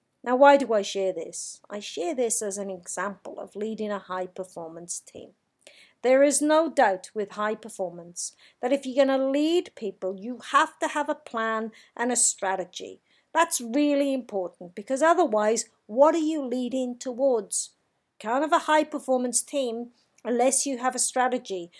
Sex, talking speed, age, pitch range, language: female, 160 wpm, 50-69, 225-285 Hz, English